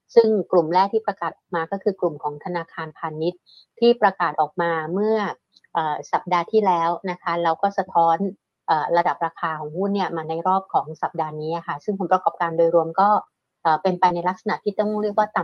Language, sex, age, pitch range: Thai, female, 60-79, 170-200 Hz